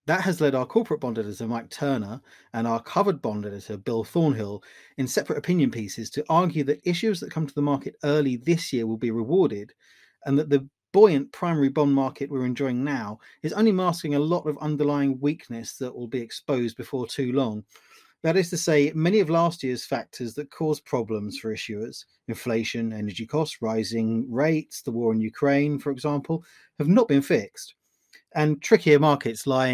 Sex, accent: male, British